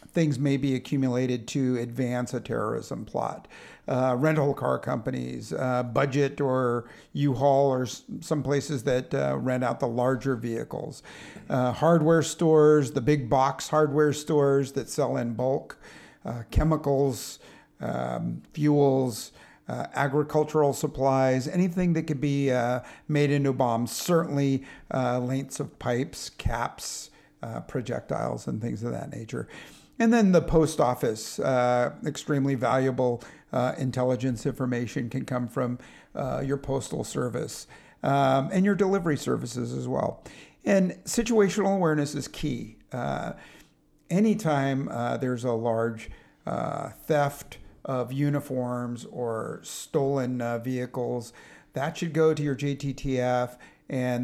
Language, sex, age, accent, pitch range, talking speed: English, male, 50-69, American, 125-145 Hz, 130 wpm